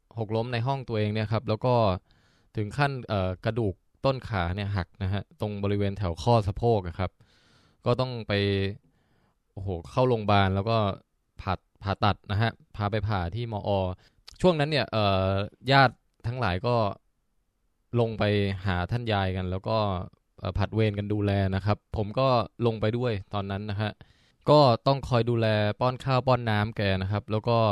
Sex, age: male, 20-39